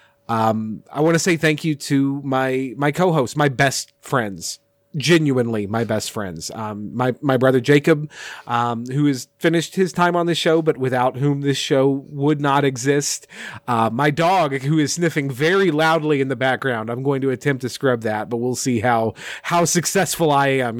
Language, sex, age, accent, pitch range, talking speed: English, male, 30-49, American, 115-150 Hz, 190 wpm